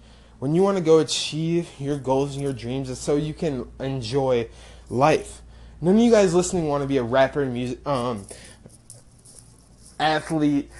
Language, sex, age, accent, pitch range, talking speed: English, male, 20-39, American, 115-175 Hz, 165 wpm